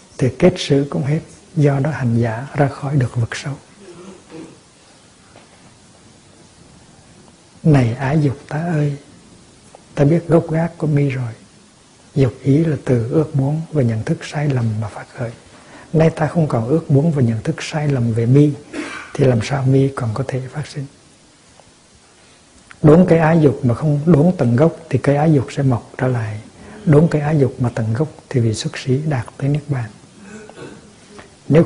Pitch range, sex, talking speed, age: 125-155 Hz, male, 180 wpm, 60-79